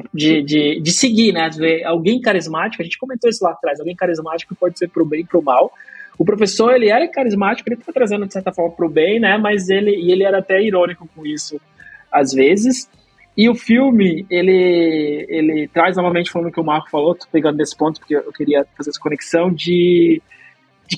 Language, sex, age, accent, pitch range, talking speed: Portuguese, male, 20-39, Brazilian, 155-215 Hz, 210 wpm